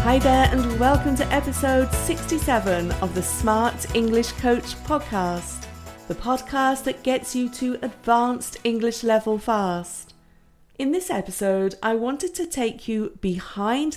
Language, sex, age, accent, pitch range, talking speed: English, female, 40-59, British, 180-230 Hz, 135 wpm